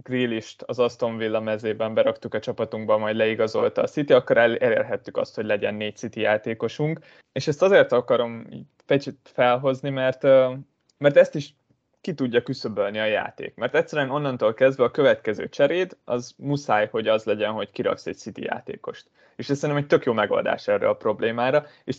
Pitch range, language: 115-150 Hz, Hungarian